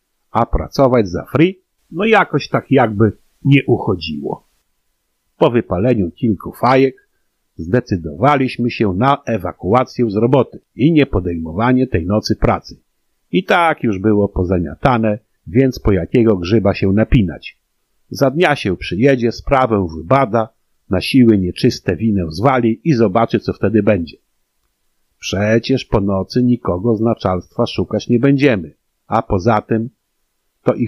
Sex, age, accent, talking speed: male, 50-69, native, 130 wpm